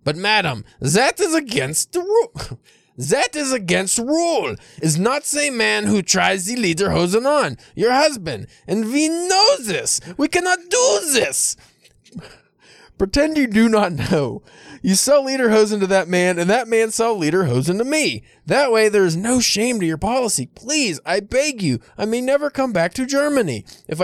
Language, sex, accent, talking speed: English, male, American, 175 wpm